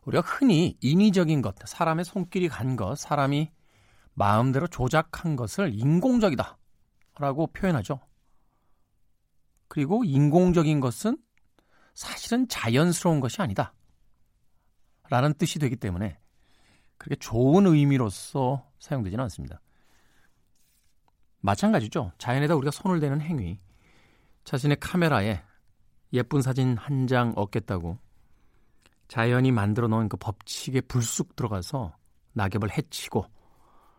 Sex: male